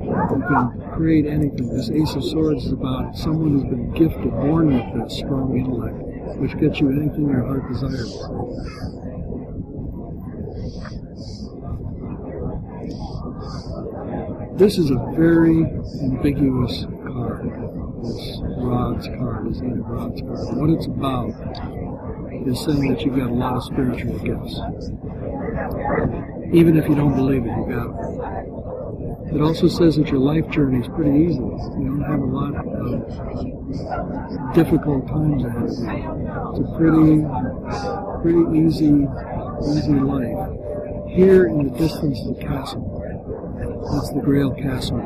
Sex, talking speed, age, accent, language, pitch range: male, 130 wpm, 60-79, American, English, 125-155 Hz